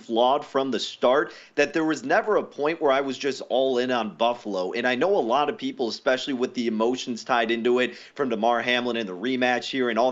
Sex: male